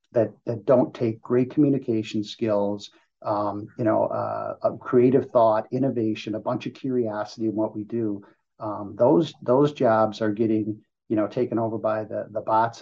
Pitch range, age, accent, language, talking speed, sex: 105-120 Hz, 50-69, American, English, 170 wpm, male